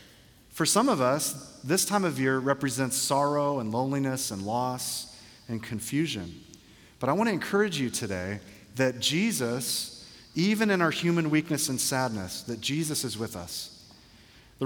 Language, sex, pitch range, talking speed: English, male, 120-155 Hz, 155 wpm